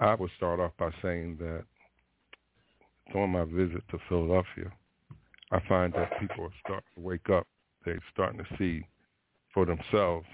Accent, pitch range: American, 85-95 Hz